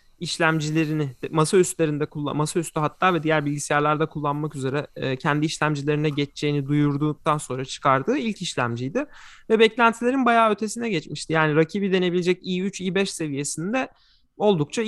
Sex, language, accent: male, Turkish, native